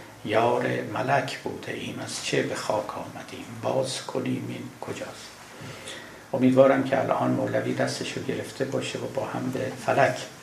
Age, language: 60-79, Persian